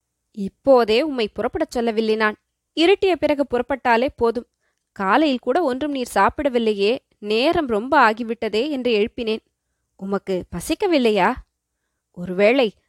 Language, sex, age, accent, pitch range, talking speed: Tamil, female, 20-39, native, 220-285 Hz, 100 wpm